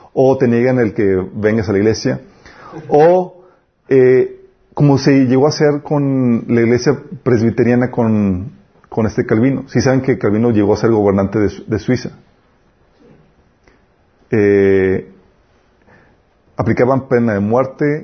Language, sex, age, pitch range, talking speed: Spanish, male, 40-59, 115-160 Hz, 135 wpm